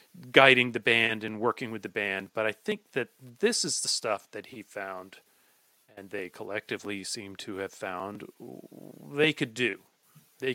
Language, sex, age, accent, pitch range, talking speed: English, male, 40-59, American, 105-160 Hz, 170 wpm